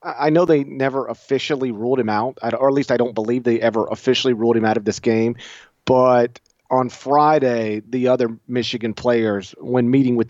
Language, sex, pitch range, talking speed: English, male, 115-135 Hz, 190 wpm